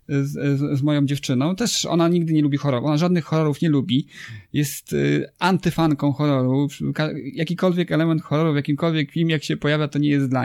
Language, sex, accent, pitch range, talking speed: Polish, male, native, 135-155 Hz, 190 wpm